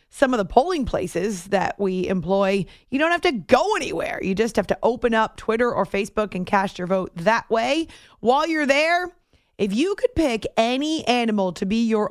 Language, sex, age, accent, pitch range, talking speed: English, female, 30-49, American, 205-285 Hz, 205 wpm